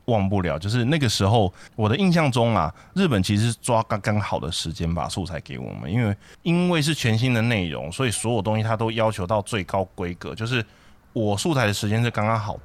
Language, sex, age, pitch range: Chinese, male, 20-39, 90-125 Hz